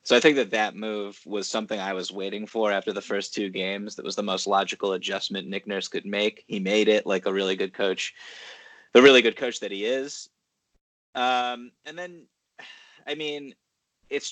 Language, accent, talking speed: English, American, 200 wpm